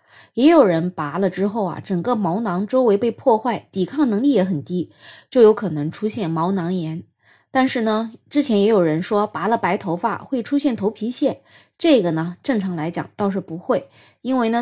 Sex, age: female, 20-39